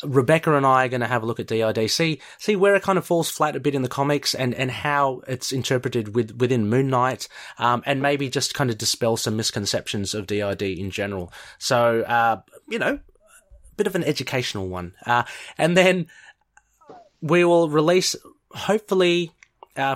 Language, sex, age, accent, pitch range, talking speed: English, male, 30-49, Australian, 115-145 Hz, 190 wpm